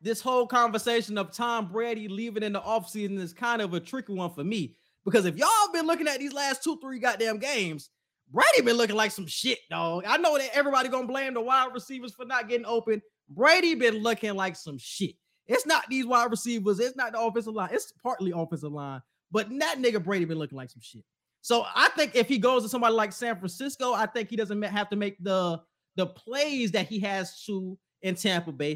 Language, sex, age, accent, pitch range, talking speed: English, male, 20-39, American, 190-245 Hz, 225 wpm